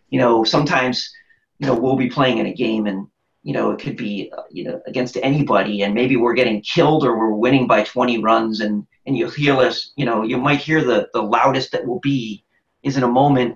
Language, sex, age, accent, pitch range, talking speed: English, male, 40-59, American, 115-155 Hz, 230 wpm